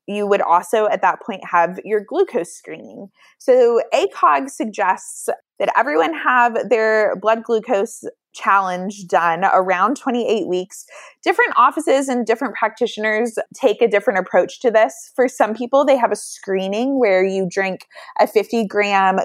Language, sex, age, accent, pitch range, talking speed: English, female, 20-39, American, 180-245 Hz, 150 wpm